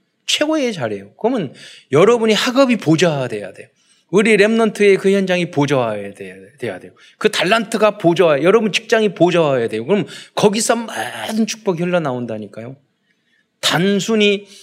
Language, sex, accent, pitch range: Korean, male, native, 140-220 Hz